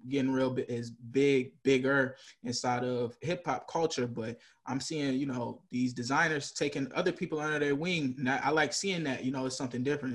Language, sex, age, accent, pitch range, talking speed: English, male, 20-39, American, 125-150 Hz, 195 wpm